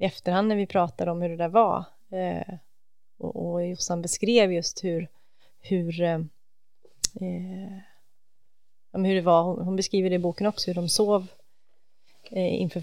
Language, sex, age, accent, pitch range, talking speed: English, female, 30-49, Swedish, 170-190 Hz, 130 wpm